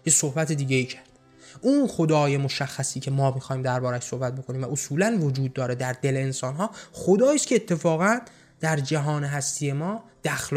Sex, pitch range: male, 140-180 Hz